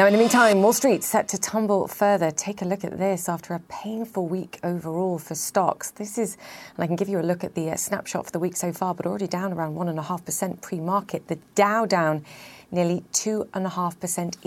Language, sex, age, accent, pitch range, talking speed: English, female, 30-49, British, 155-185 Hz, 205 wpm